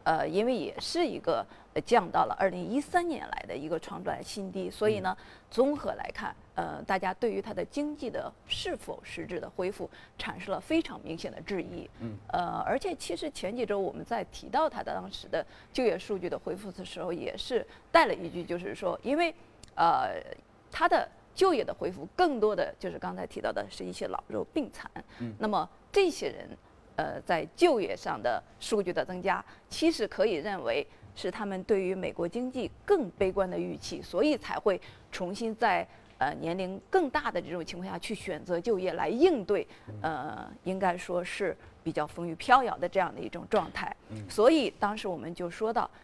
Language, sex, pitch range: Chinese, female, 180-290 Hz